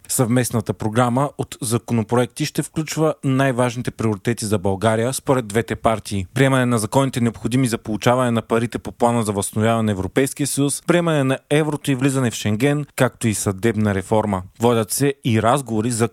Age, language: 30-49, Bulgarian